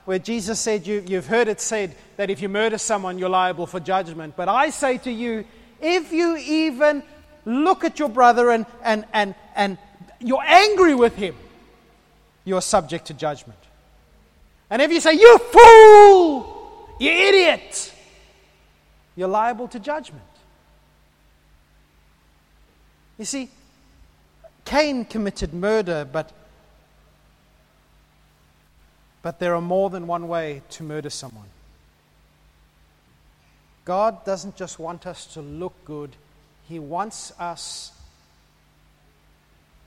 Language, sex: English, male